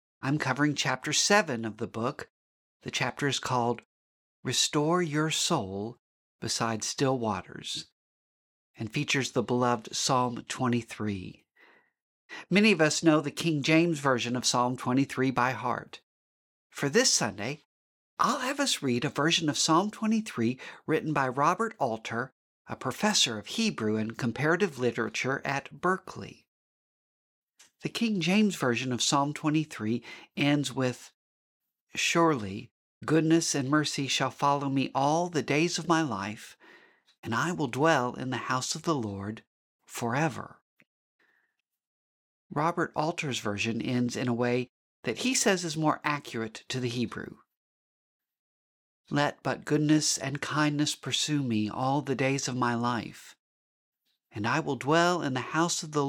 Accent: American